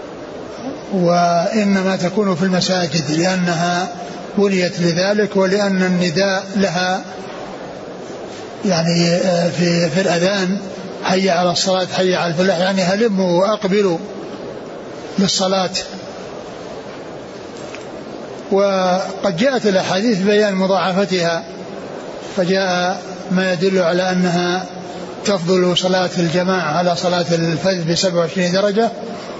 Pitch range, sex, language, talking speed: 180-200 Hz, male, Arabic, 85 wpm